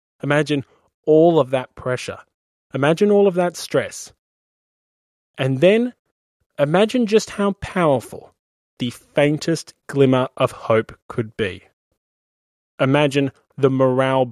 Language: English